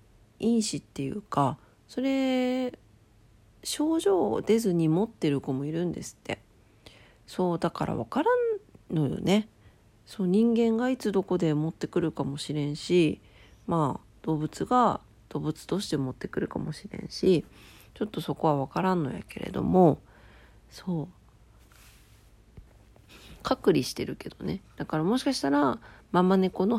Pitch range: 140-190 Hz